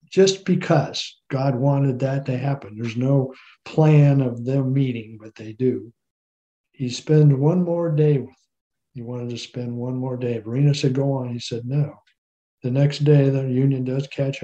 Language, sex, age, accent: English, male, 60-79, American